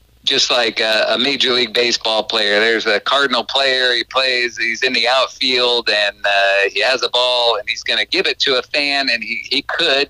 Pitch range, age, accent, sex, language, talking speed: 120-140 Hz, 50-69, American, male, English, 215 wpm